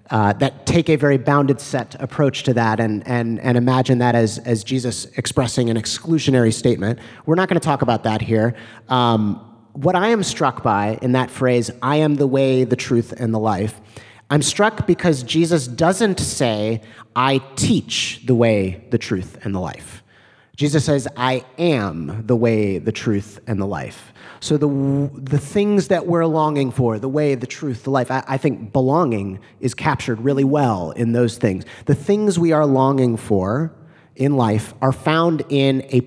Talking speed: 185 wpm